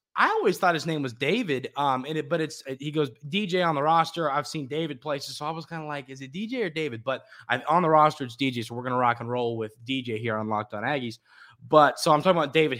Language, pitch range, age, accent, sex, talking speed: English, 135-175 Hz, 20-39, American, male, 285 wpm